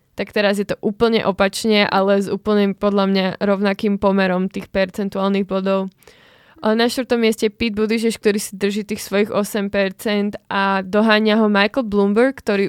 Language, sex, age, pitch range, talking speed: Slovak, female, 20-39, 200-225 Hz, 165 wpm